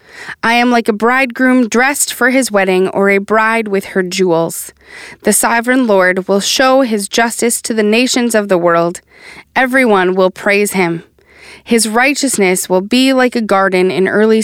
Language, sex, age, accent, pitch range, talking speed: English, female, 20-39, American, 190-240 Hz, 170 wpm